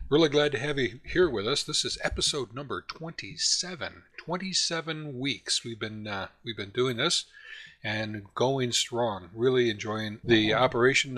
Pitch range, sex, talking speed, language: 110-145 Hz, male, 155 wpm, English